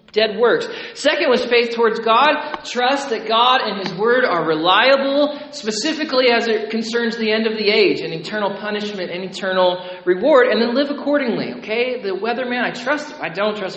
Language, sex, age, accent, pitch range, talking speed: English, male, 40-59, American, 175-230 Hz, 185 wpm